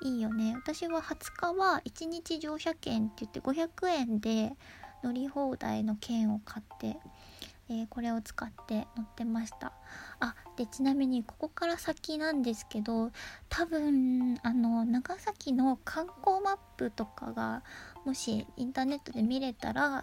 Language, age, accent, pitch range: Japanese, 20-39, native, 230-300 Hz